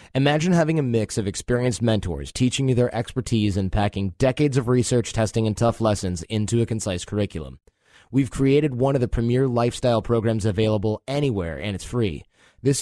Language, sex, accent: English, male, American